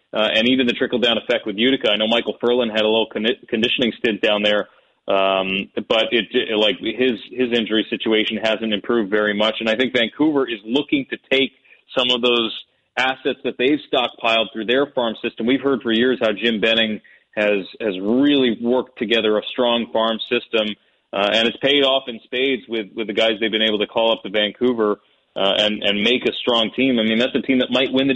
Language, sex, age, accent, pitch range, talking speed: English, male, 30-49, American, 110-125 Hz, 220 wpm